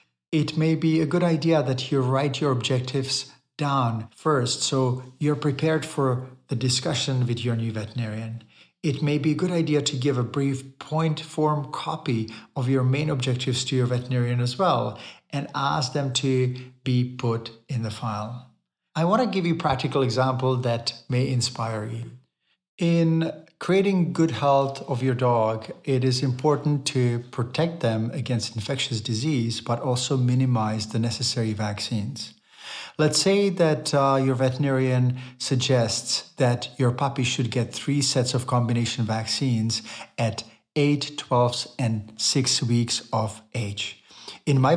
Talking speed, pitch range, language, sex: 155 wpm, 120-145 Hz, English, male